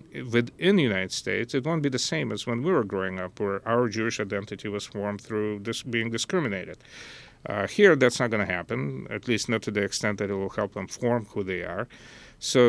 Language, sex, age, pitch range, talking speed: English, male, 40-59, 100-130 Hz, 220 wpm